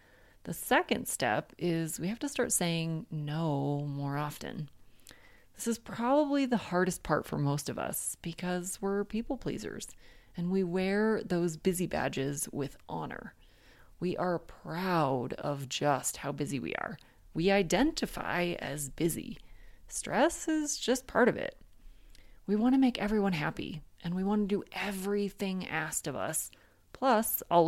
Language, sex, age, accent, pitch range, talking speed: English, female, 30-49, American, 150-205 Hz, 150 wpm